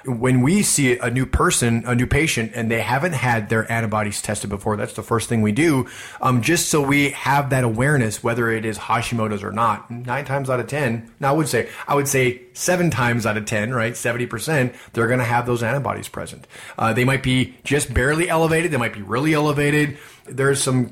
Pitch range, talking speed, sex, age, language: 110-130 Hz, 220 wpm, male, 30-49, English